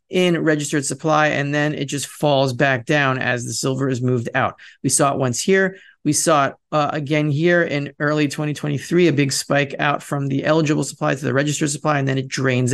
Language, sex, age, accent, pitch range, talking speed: English, male, 30-49, American, 145-175 Hz, 215 wpm